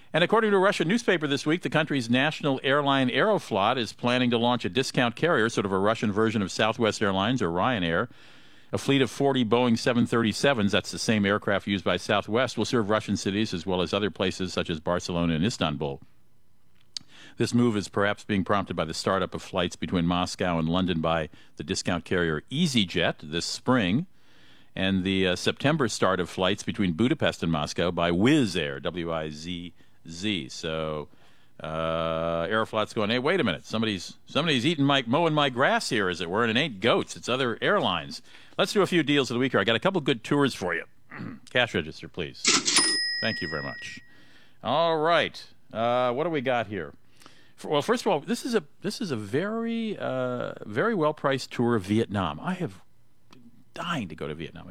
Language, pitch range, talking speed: English, 95-140 Hz, 195 wpm